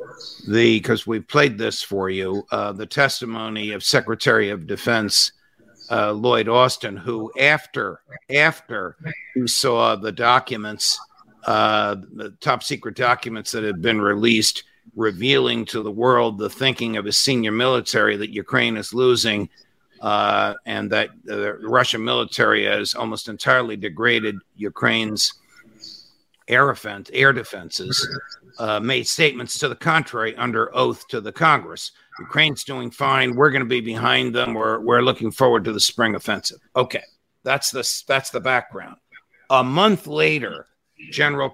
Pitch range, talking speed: 110-135 Hz, 145 wpm